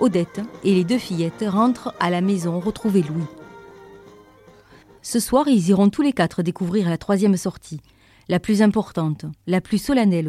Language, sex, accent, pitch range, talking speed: French, female, French, 165-195 Hz, 165 wpm